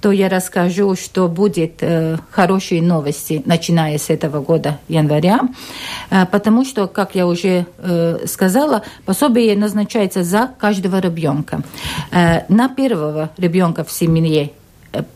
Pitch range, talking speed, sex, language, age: 160-200 Hz, 130 wpm, female, Russian, 50-69